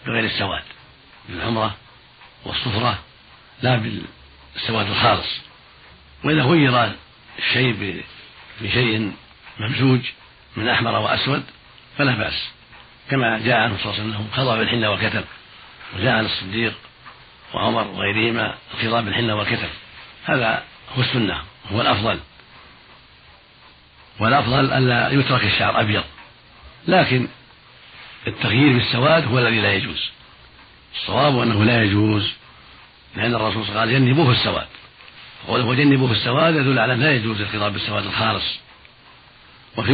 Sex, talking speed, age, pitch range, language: male, 115 wpm, 60-79, 105-125 Hz, Arabic